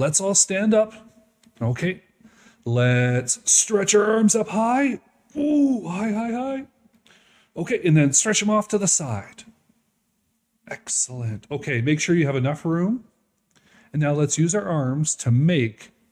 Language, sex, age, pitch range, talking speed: English, male, 40-59, 150-225 Hz, 150 wpm